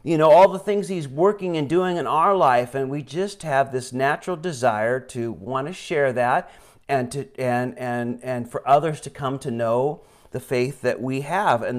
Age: 40-59